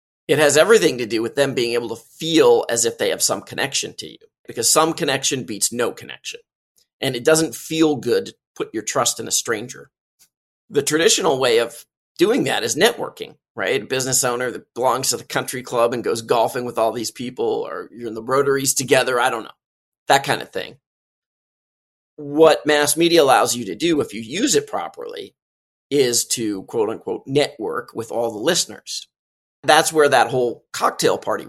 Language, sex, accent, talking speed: English, male, American, 195 wpm